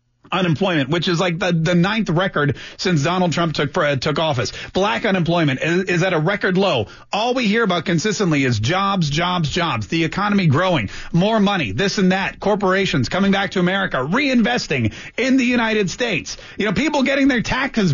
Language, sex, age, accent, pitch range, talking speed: English, male, 40-59, American, 155-210 Hz, 185 wpm